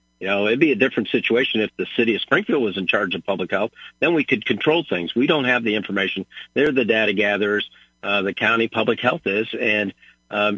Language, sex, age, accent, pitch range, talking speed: English, male, 50-69, American, 100-125 Hz, 225 wpm